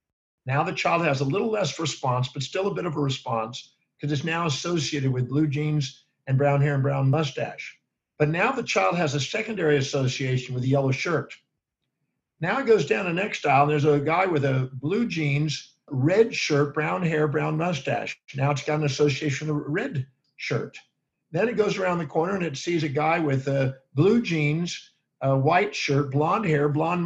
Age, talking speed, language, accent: 50-69, 200 wpm, English, American